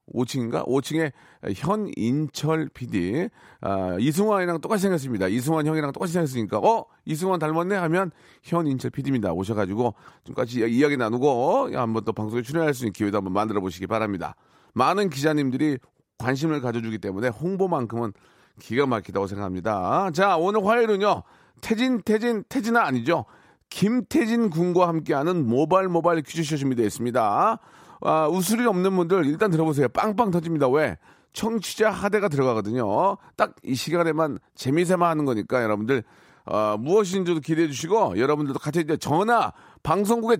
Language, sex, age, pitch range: Korean, male, 40-59, 135-200 Hz